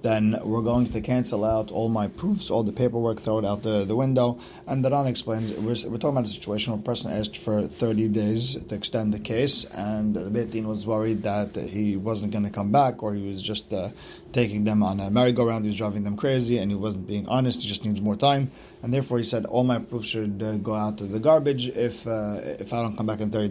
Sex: male